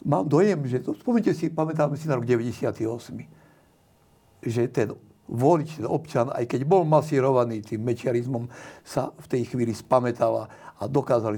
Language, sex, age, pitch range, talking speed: Slovak, male, 60-79, 120-150 Hz, 150 wpm